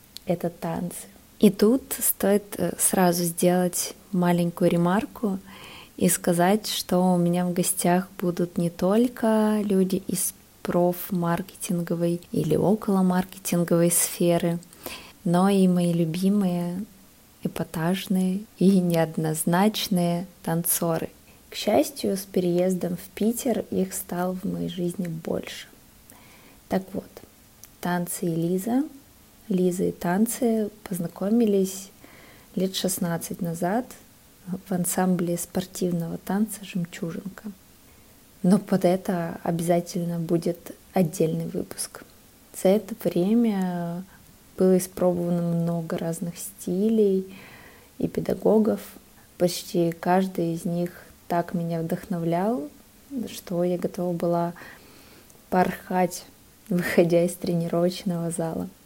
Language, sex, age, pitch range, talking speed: Russian, female, 20-39, 175-200 Hz, 95 wpm